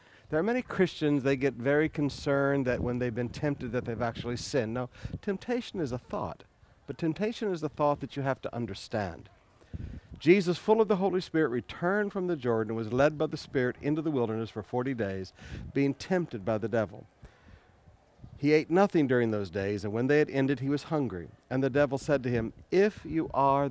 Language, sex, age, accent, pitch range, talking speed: English, male, 60-79, American, 120-170 Hz, 210 wpm